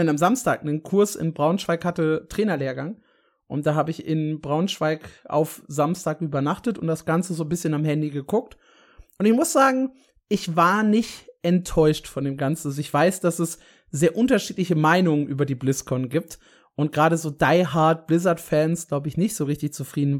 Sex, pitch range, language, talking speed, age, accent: male, 145-180 Hz, German, 180 wpm, 30-49, German